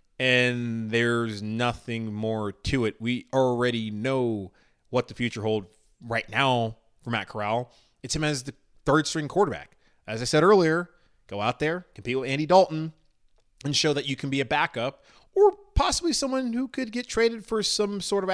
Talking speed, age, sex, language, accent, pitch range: 175 wpm, 20-39, male, English, American, 115-165 Hz